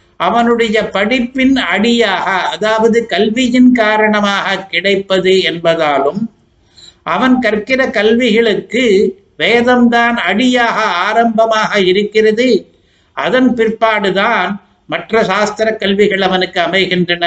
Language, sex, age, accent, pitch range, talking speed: Tamil, male, 60-79, native, 180-225 Hz, 75 wpm